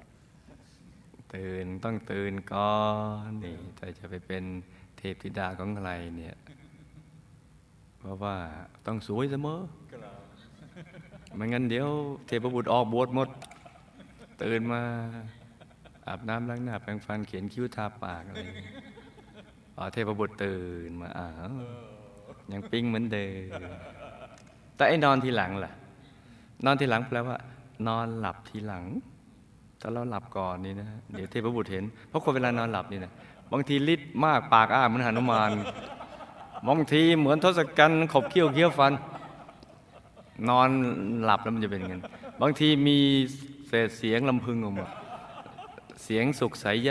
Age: 20-39